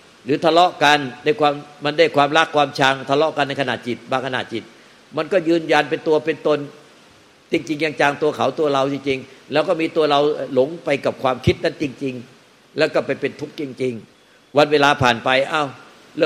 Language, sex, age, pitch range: Thai, male, 60-79, 135-155 Hz